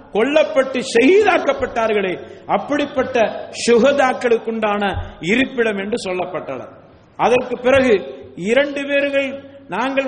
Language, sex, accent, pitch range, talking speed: English, male, Indian, 185-245 Hz, 75 wpm